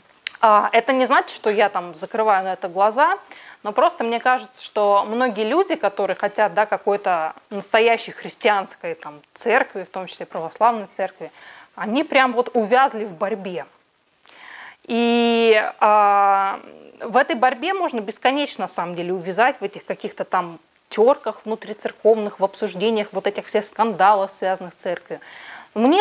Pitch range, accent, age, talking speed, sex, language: 195-250 Hz, native, 20-39, 145 wpm, female, Russian